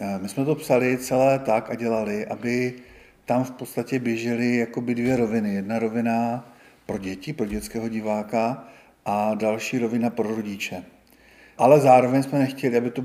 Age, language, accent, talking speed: 40-59, Czech, native, 150 wpm